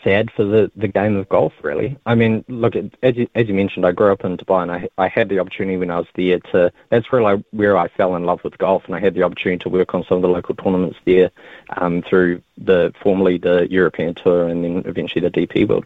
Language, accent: English, Australian